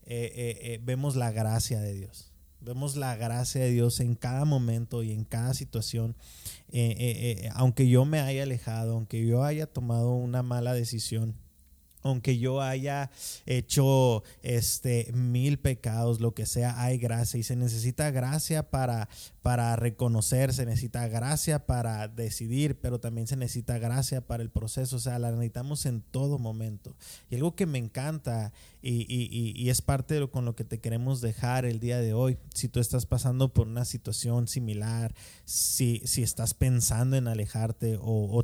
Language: Spanish